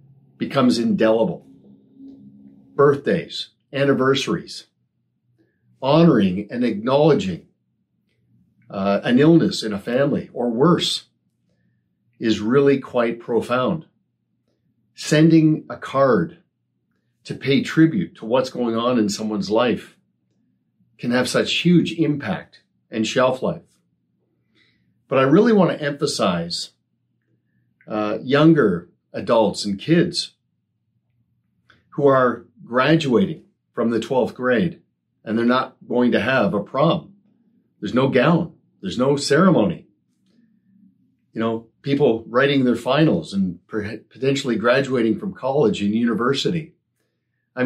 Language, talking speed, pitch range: English, 110 wpm, 100-140 Hz